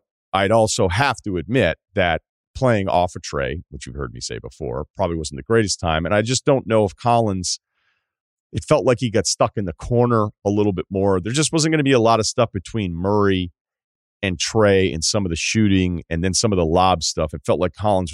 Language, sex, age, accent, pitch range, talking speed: English, male, 40-59, American, 85-115 Hz, 235 wpm